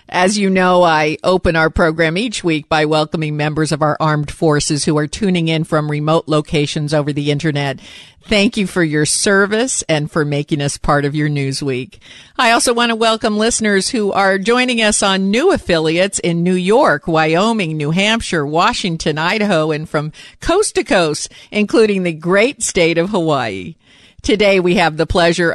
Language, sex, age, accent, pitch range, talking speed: English, female, 50-69, American, 155-205 Hz, 180 wpm